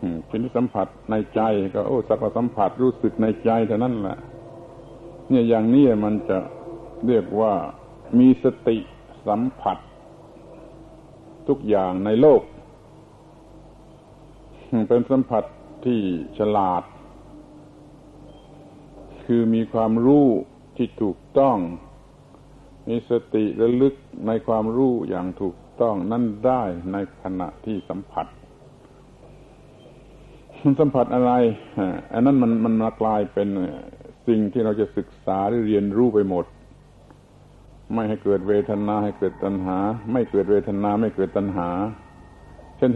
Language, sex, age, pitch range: Thai, male, 60-79, 100-130 Hz